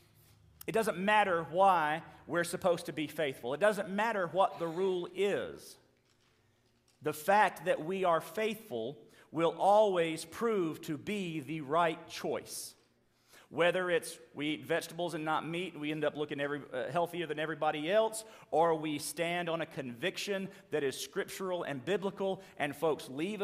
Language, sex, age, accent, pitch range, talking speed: English, male, 40-59, American, 140-185 Hz, 160 wpm